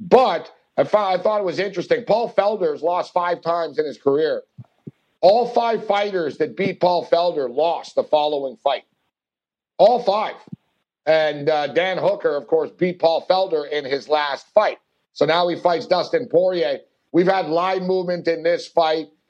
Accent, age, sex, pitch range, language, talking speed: American, 50-69, male, 165-200 Hz, English, 165 wpm